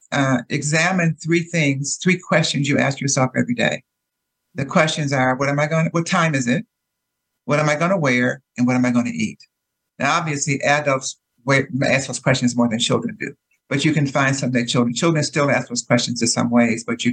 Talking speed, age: 225 wpm, 60-79